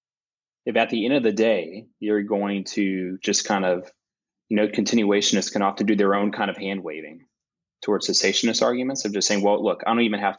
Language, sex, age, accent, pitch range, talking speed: English, male, 20-39, American, 90-105 Hz, 215 wpm